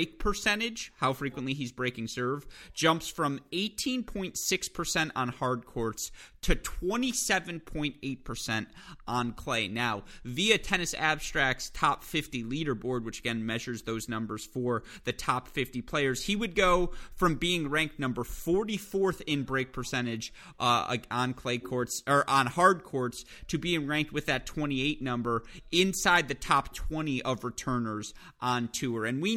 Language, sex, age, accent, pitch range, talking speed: English, male, 30-49, American, 120-175 Hz, 140 wpm